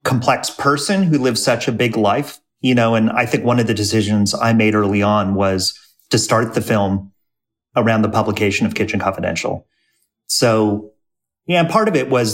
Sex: male